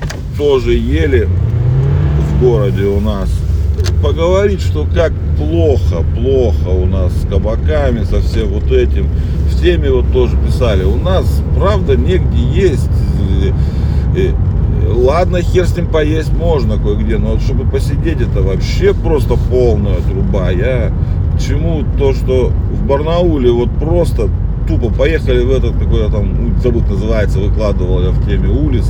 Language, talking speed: Russian, 135 wpm